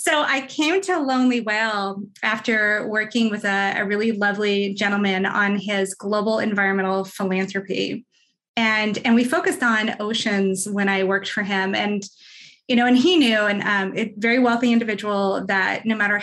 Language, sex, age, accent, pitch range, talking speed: English, female, 20-39, American, 205-255 Hz, 170 wpm